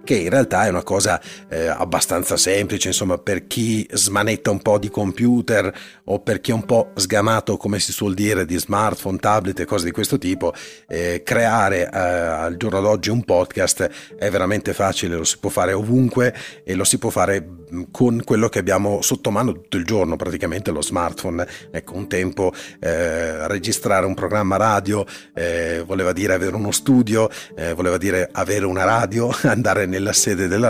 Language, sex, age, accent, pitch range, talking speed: English, male, 30-49, Italian, 90-115 Hz, 185 wpm